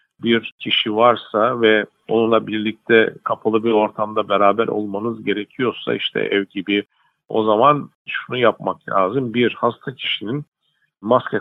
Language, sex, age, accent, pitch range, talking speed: Turkish, male, 50-69, native, 105-120 Hz, 125 wpm